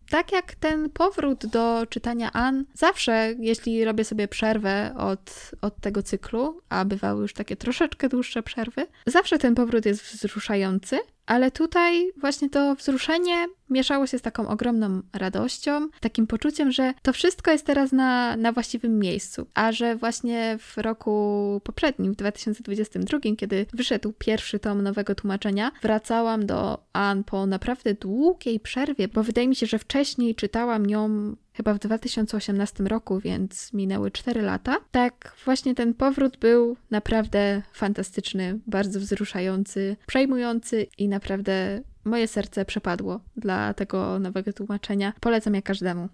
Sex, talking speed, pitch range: female, 140 wpm, 200-250 Hz